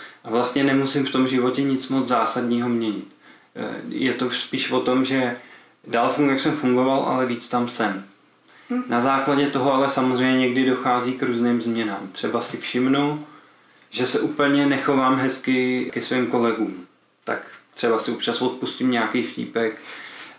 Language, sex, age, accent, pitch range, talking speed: Czech, male, 20-39, native, 120-135 Hz, 155 wpm